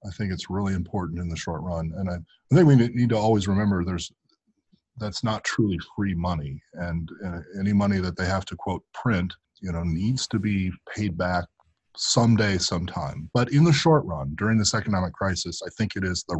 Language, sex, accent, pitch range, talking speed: English, male, American, 90-110 Hz, 210 wpm